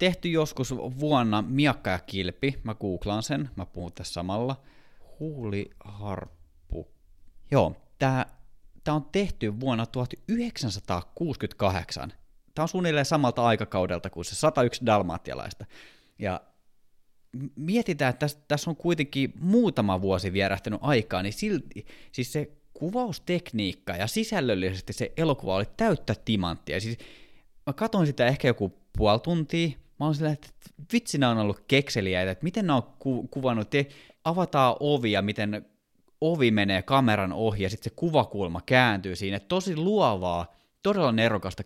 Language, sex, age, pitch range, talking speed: Finnish, male, 30-49, 100-145 Hz, 130 wpm